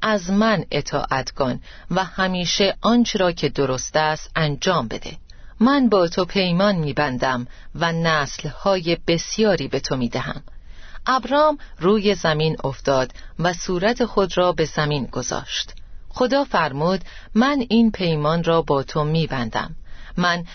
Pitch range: 145-205 Hz